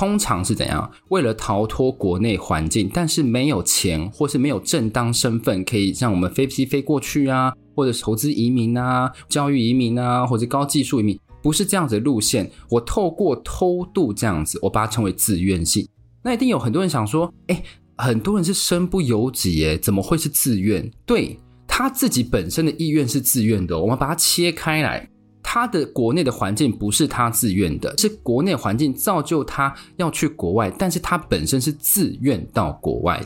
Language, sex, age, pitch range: Chinese, male, 20-39, 105-155 Hz